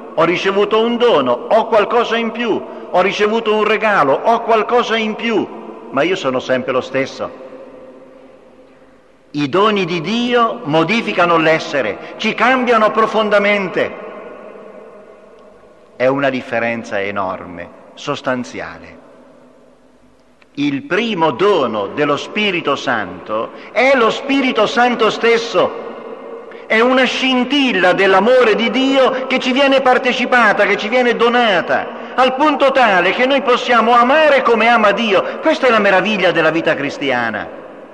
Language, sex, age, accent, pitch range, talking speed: Italian, male, 50-69, native, 170-255 Hz, 125 wpm